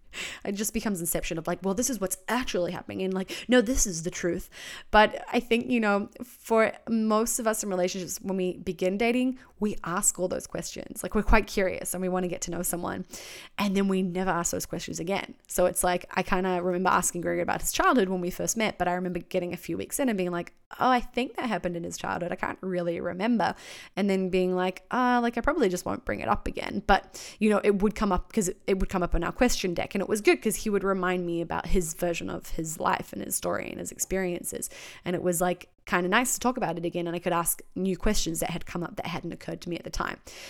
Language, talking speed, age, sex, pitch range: English, 265 wpm, 20-39, female, 175-210 Hz